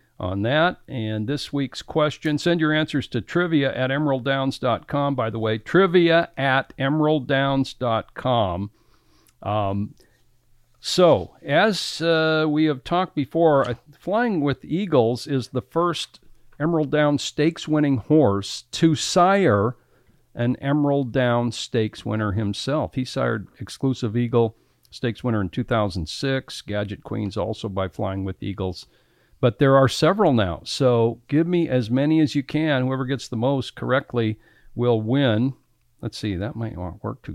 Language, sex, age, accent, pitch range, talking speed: English, male, 50-69, American, 110-150 Hz, 140 wpm